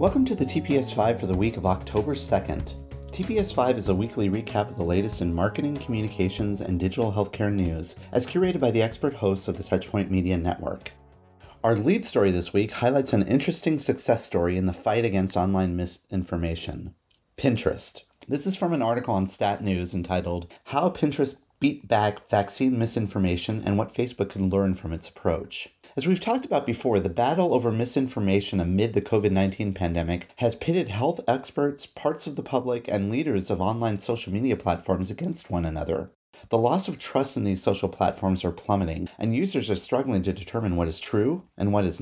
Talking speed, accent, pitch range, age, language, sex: 185 wpm, American, 95-125 Hz, 30-49, English, male